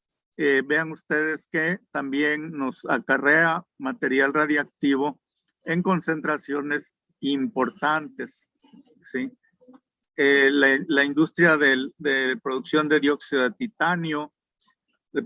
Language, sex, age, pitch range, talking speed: Spanish, male, 50-69, 135-170 Hz, 100 wpm